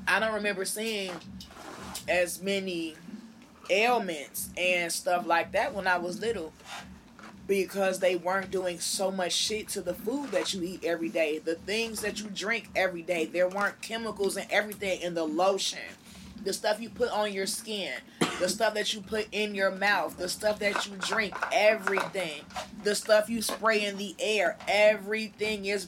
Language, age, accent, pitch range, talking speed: English, 20-39, American, 190-225 Hz, 175 wpm